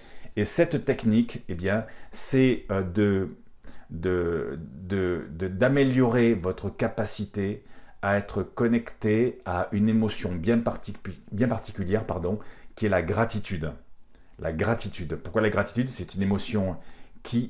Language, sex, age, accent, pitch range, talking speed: French, male, 40-59, French, 90-110 Hz, 125 wpm